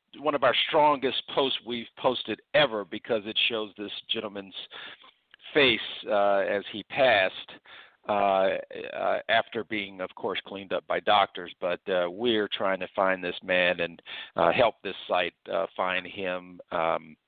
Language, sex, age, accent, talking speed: English, male, 50-69, American, 155 wpm